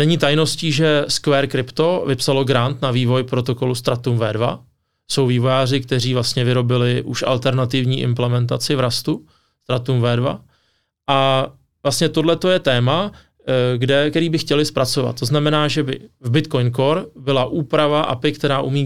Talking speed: 145 wpm